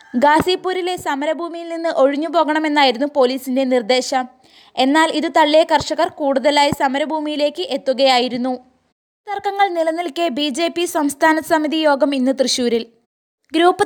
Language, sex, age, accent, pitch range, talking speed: Malayalam, female, 20-39, native, 265-320 Hz, 100 wpm